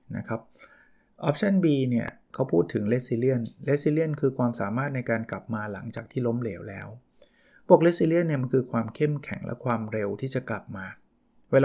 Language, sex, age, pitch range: Thai, male, 20-39, 115-140 Hz